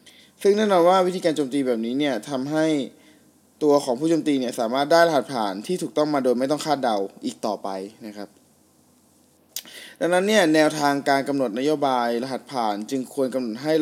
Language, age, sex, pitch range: Thai, 20-39, male, 120-155 Hz